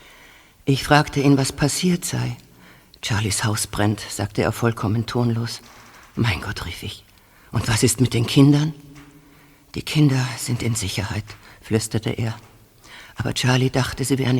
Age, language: 50-69, German